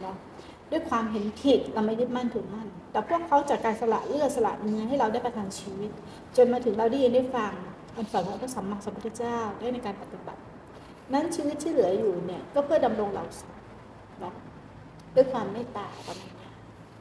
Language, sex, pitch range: Thai, female, 205-250 Hz